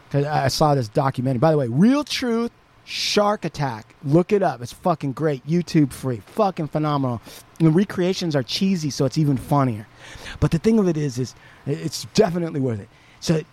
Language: English